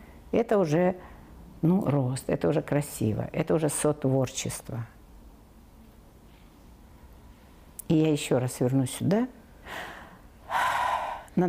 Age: 60-79